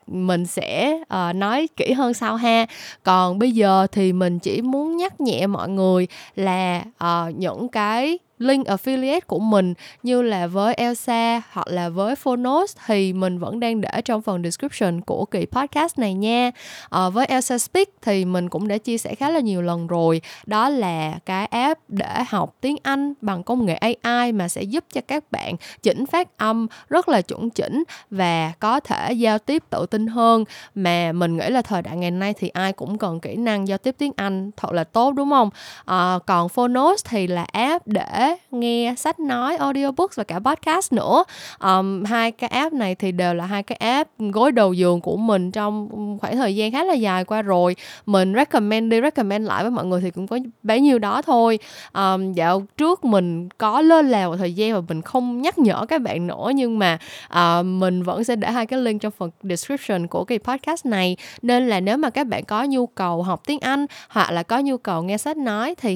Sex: female